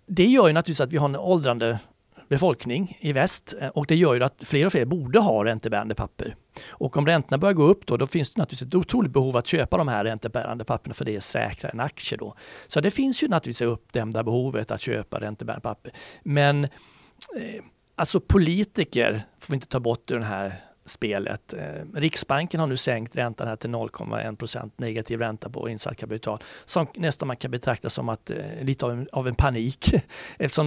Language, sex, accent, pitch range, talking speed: Swedish, male, native, 115-160 Hz, 200 wpm